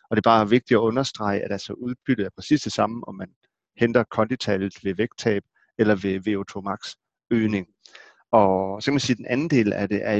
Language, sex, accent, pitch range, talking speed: Danish, male, native, 100-115 Hz, 220 wpm